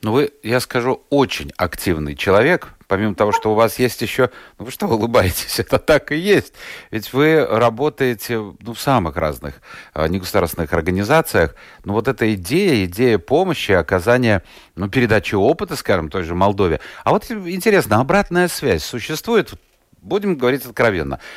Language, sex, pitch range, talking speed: Russian, male, 95-130 Hz, 155 wpm